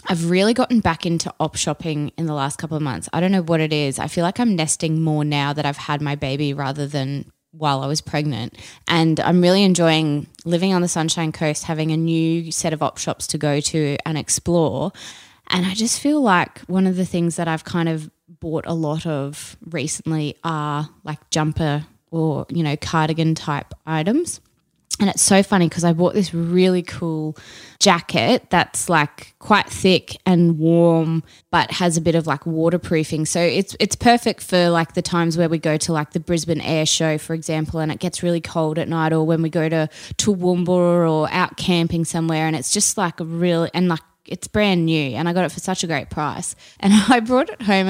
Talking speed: 210 wpm